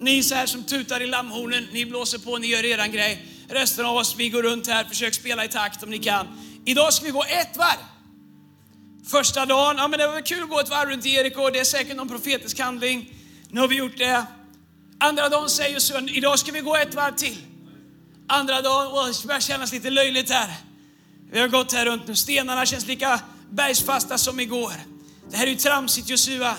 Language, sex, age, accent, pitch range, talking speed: Swedish, male, 30-49, native, 240-285 Hz, 220 wpm